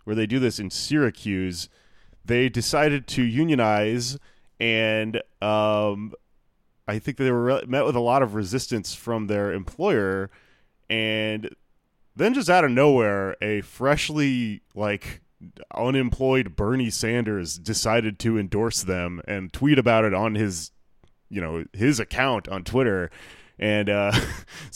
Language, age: English, 20-39